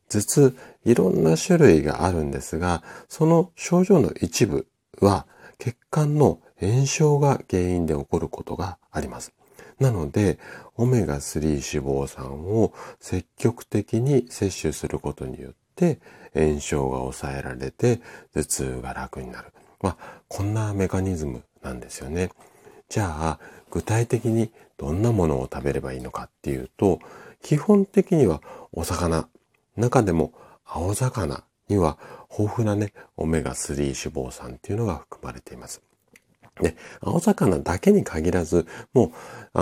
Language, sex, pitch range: Japanese, male, 75-120 Hz